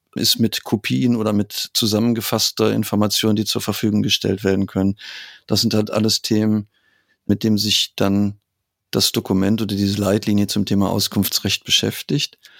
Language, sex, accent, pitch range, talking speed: German, male, German, 100-110 Hz, 150 wpm